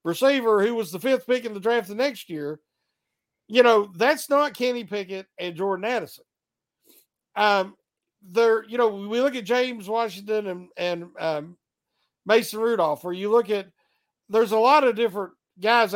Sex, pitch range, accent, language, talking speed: male, 185-245 Hz, American, English, 170 wpm